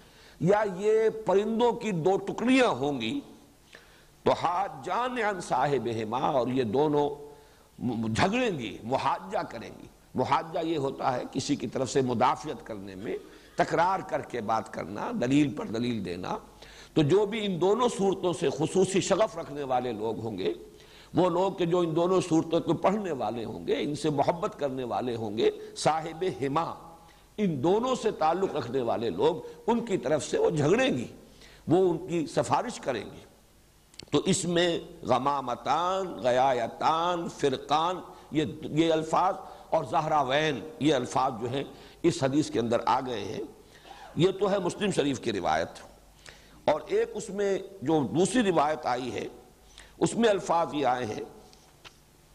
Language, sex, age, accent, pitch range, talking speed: English, male, 60-79, Indian, 145-200 Hz, 140 wpm